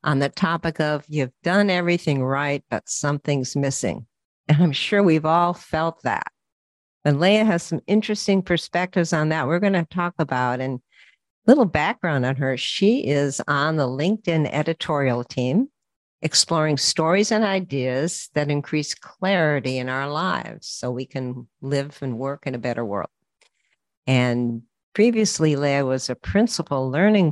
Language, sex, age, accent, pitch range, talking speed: English, female, 60-79, American, 130-170 Hz, 155 wpm